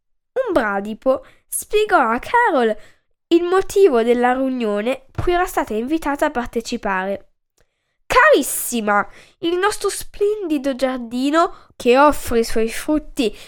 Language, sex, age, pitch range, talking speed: Italian, female, 10-29, 240-350 Hz, 110 wpm